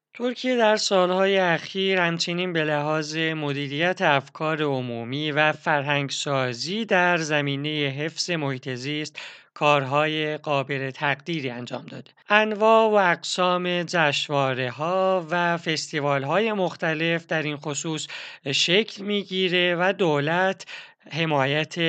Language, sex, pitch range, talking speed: Persian, male, 145-180 Hz, 100 wpm